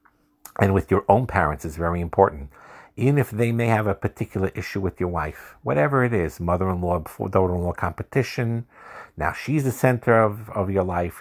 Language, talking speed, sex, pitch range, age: English, 175 wpm, male, 90-110 Hz, 50-69